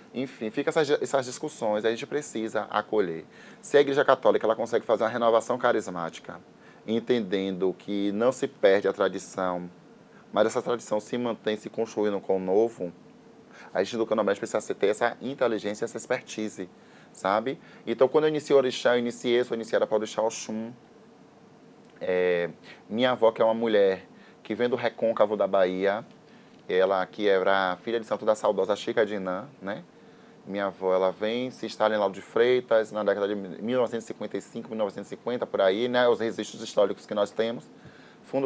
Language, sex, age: Portuguese, male, 20-39